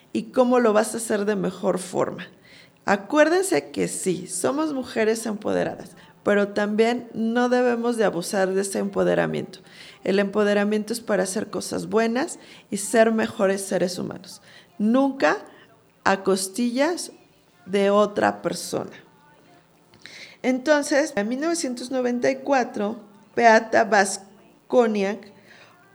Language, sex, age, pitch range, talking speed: Spanish, female, 40-59, 200-245 Hz, 110 wpm